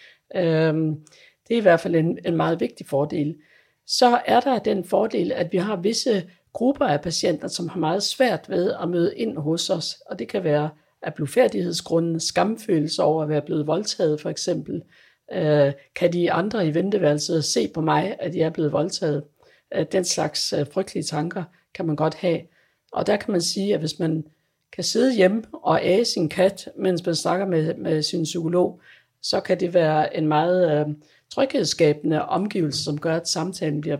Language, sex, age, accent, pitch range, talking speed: Danish, female, 60-79, native, 155-195 Hz, 180 wpm